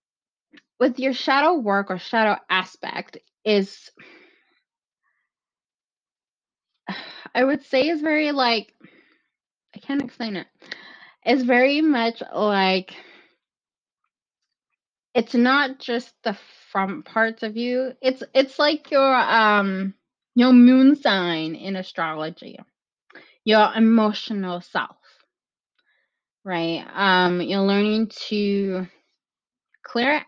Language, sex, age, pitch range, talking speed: English, female, 20-39, 185-255 Hz, 95 wpm